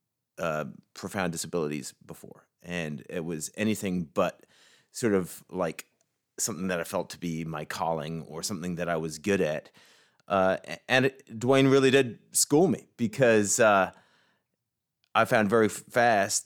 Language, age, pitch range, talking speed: English, 30-49, 85-115 Hz, 145 wpm